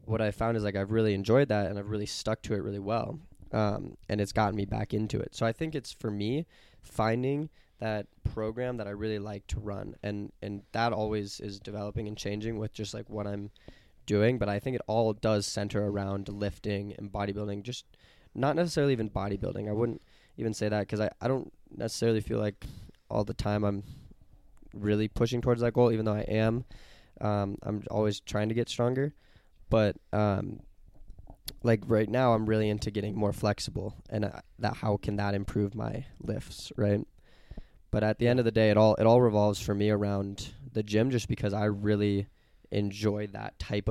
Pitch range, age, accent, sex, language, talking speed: 100-115 Hz, 20-39, American, male, English, 200 wpm